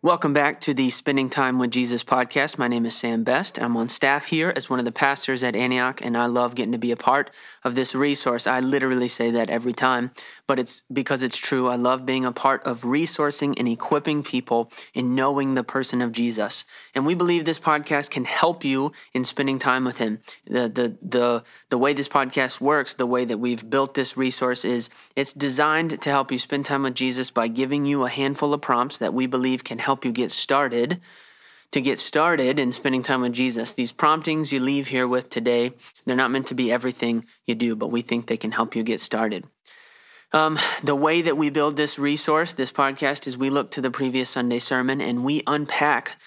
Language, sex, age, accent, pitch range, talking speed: English, male, 20-39, American, 120-140 Hz, 220 wpm